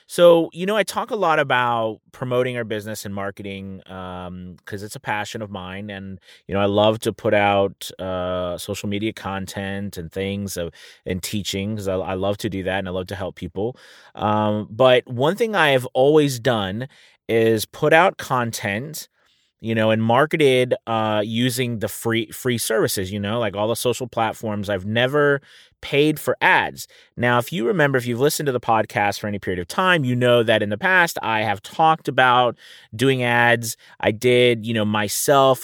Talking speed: 190 wpm